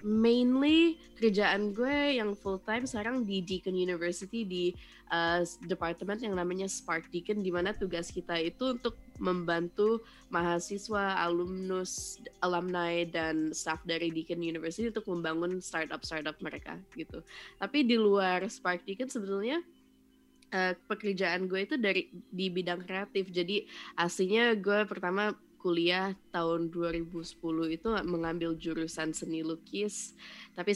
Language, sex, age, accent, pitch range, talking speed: Indonesian, female, 20-39, native, 165-200 Hz, 120 wpm